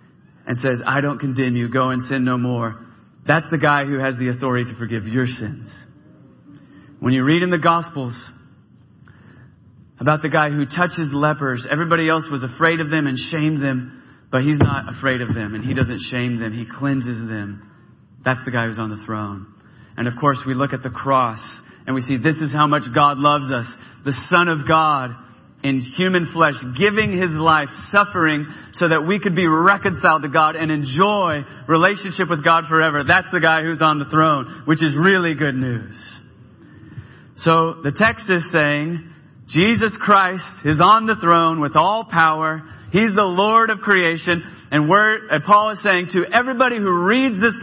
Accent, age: American, 40-59